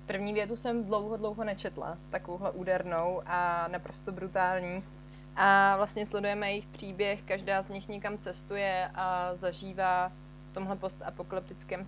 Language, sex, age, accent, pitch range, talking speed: Czech, female, 20-39, native, 180-205 Hz, 130 wpm